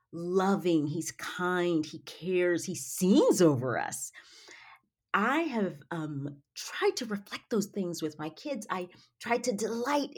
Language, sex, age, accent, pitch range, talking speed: English, female, 40-59, American, 145-205 Hz, 140 wpm